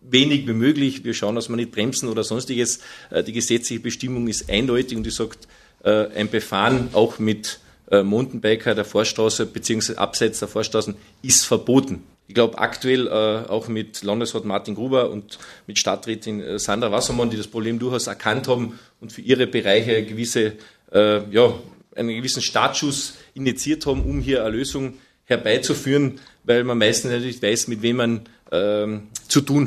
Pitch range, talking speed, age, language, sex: 110-125 Hz, 155 wpm, 40-59, German, male